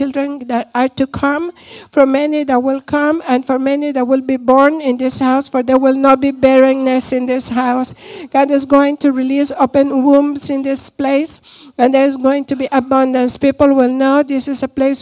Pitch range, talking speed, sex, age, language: 255-280 Hz, 210 wpm, female, 60-79, English